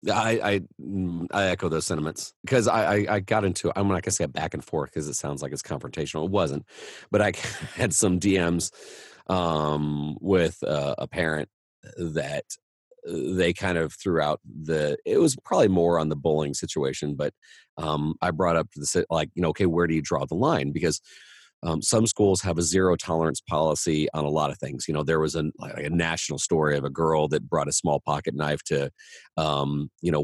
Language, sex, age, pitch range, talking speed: English, male, 40-59, 75-90 Hz, 205 wpm